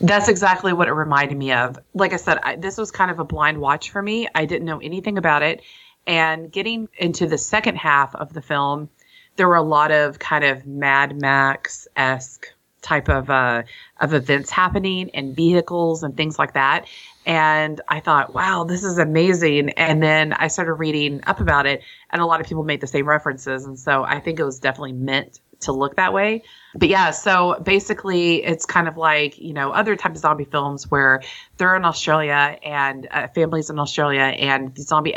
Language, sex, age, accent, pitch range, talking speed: English, female, 30-49, American, 135-165 Hz, 205 wpm